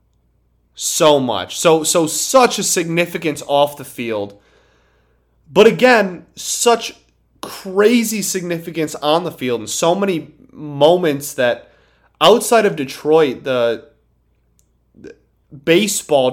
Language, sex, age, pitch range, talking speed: English, male, 20-39, 115-165 Hz, 105 wpm